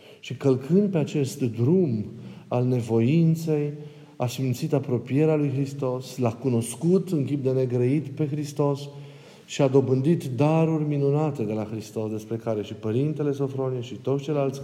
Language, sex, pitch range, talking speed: Romanian, male, 120-155 Hz, 150 wpm